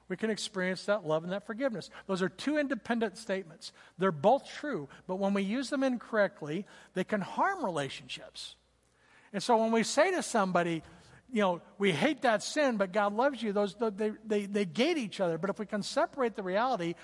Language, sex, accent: English, male, American